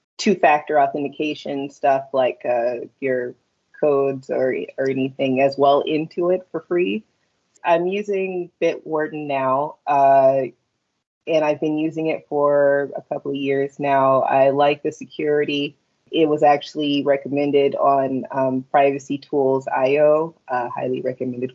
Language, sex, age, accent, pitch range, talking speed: English, female, 30-49, American, 135-155 Hz, 130 wpm